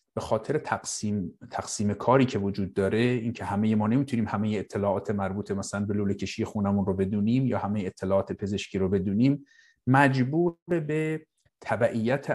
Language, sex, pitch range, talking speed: Persian, male, 105-135 Hz, 155 wpm